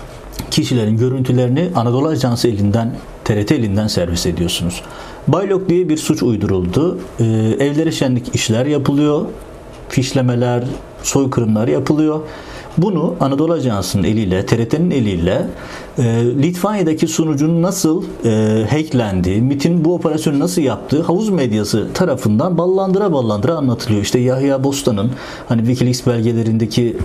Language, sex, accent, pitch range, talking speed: Turkish, male, native, 115-165 Hz, 110 wpm